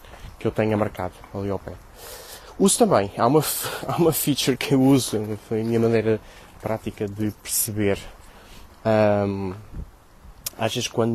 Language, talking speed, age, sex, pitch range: Portuguese, 145 wpm, 20-39, male, 105-130 Hz